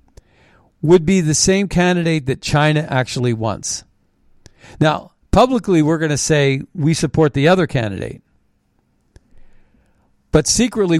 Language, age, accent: English, 50-69, American